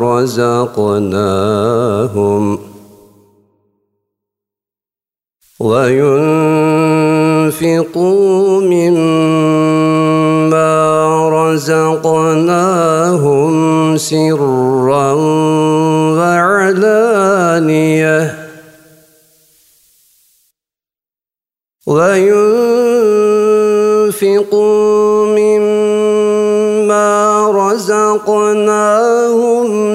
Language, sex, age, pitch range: Turkish, male, 50-69, 155-210 Hz